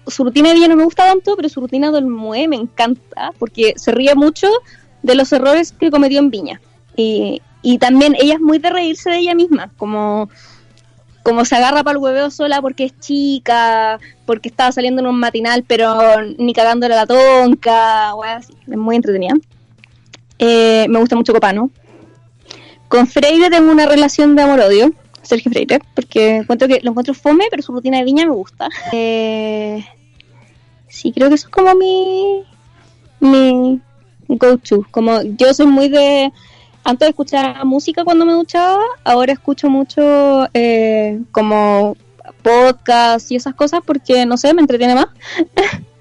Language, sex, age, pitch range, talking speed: Spanish, female, 20-39, 225-290 Hz, 165 wpm